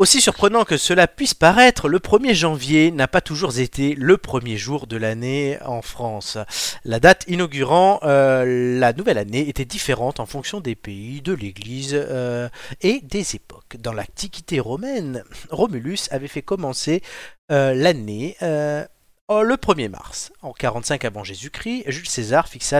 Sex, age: male, 40-59